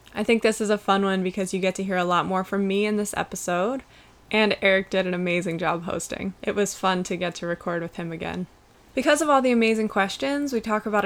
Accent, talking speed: American, 250 wpm